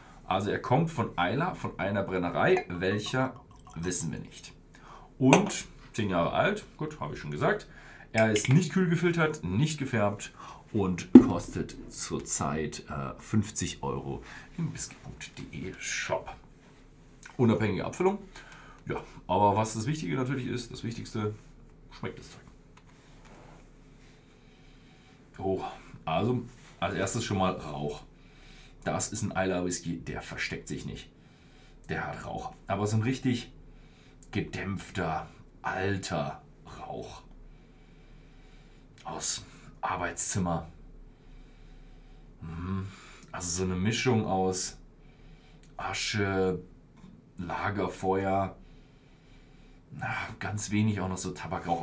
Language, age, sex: German, 40-59, male